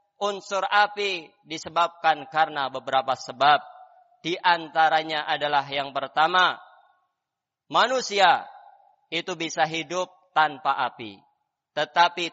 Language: Indonesian